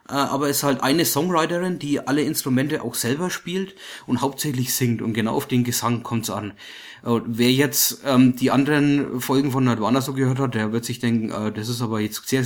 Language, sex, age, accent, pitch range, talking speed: English, male, 30-49, German, 120-140 Hz, 205 wpm